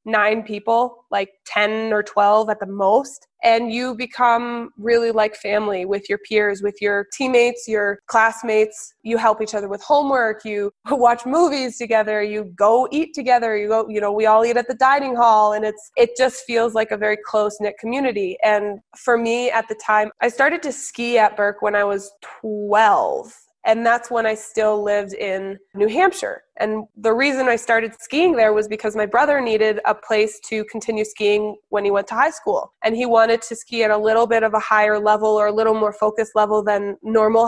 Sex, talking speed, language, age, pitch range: female, 205 wpm, English, 20-39, 210-240 Hz